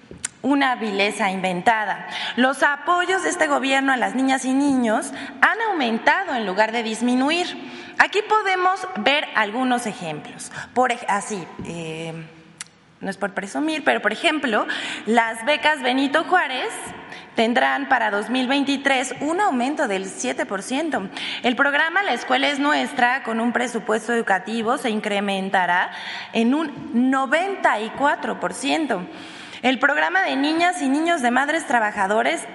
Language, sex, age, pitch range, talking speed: Spanish, female, 20-39, 220-295 Hz, 125 wpm